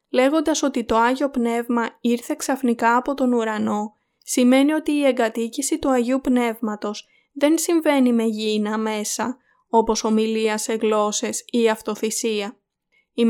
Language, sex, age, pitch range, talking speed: Greek, female, 20-39, 225-265 Hz, 130 wpm